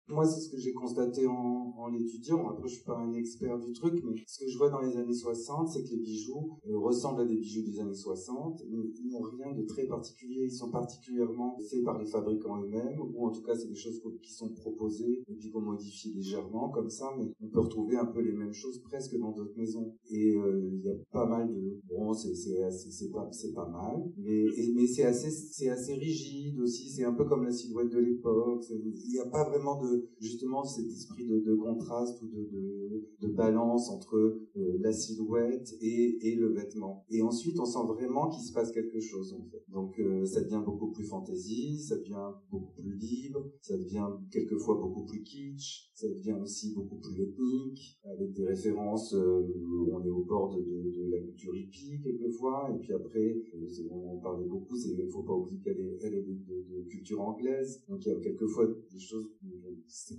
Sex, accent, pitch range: male, French, 105-125 Hz